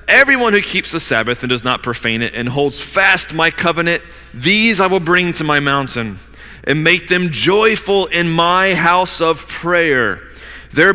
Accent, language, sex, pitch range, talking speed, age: American, English, male, 110-175 Hz, 175 wpm, 30-49